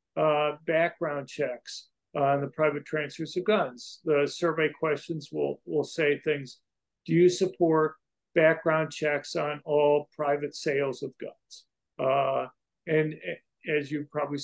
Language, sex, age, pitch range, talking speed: English, male, 50-69, 145-165 Hz, 135 wpm